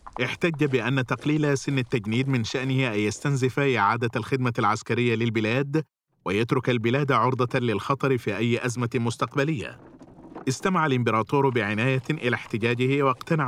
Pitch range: 115-140 Hz